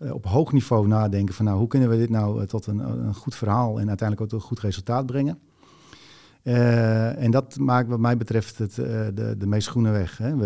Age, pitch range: 40-59, 105-125 Hz